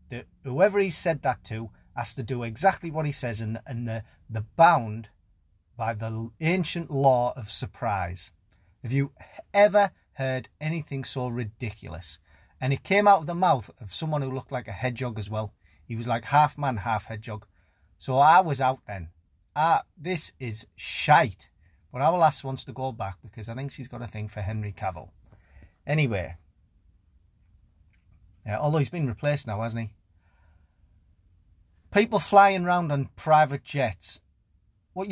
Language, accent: English, British